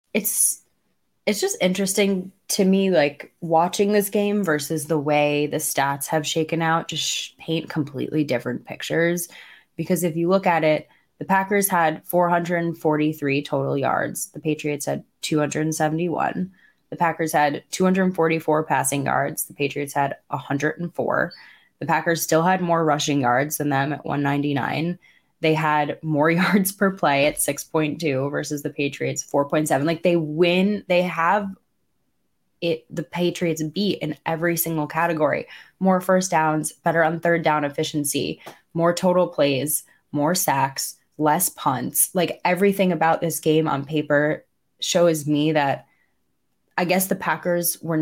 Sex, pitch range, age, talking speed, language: female, 150-175 Hz, 20-39, 145 wpm, English